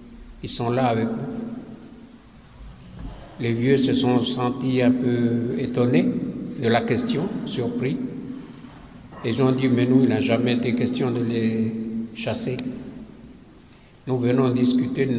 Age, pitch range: 60-79, 120-140 Hz